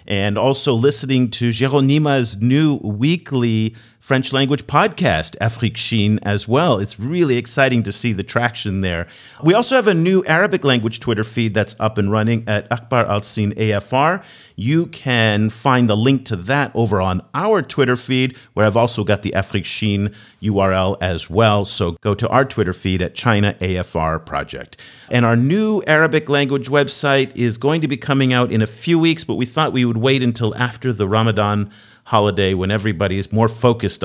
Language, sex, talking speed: English, male, 180 wpm